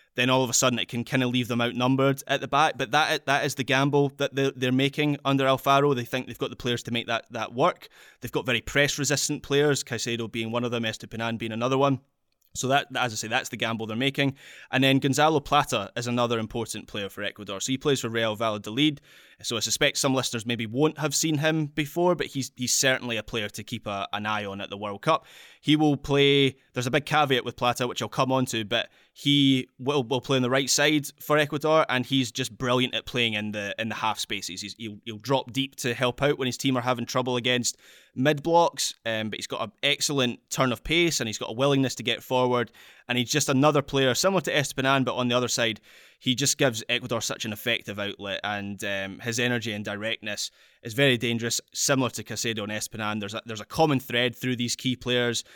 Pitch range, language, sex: 115-140 Hz, English, male